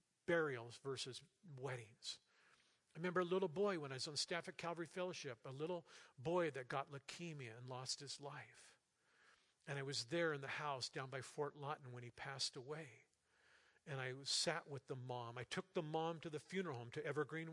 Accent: American